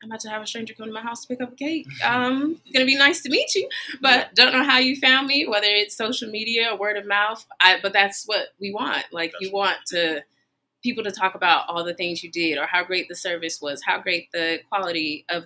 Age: 20-39